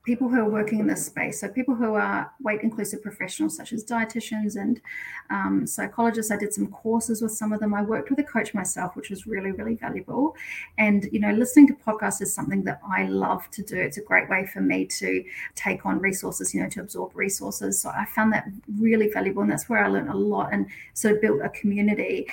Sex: female